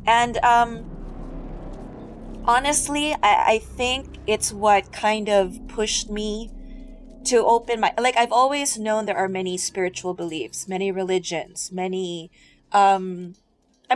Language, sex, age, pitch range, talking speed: Filipino, female, 20-39, 185-235 Hz, 120 wpm